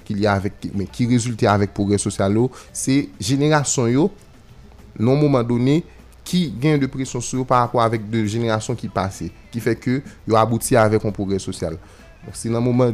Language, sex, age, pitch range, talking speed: French, male, 30-49, 100-125 Hz, 190 wpm